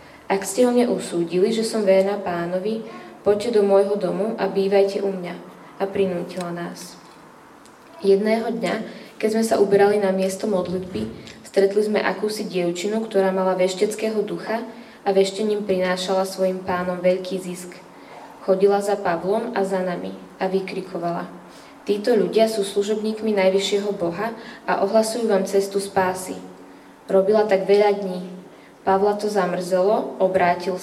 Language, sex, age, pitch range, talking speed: Slovak, female, 20-39, 185-210 Hz, 135 wpm